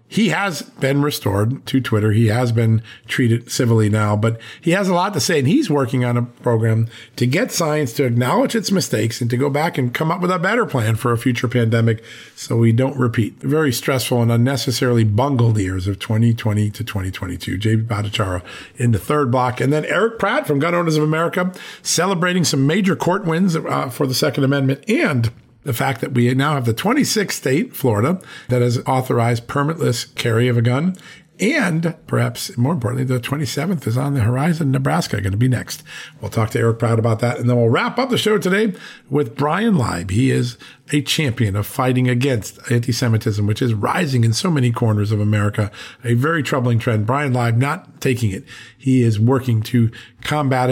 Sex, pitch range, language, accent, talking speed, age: male, 110-150 Hz, English, American, 200 wpm, 50-69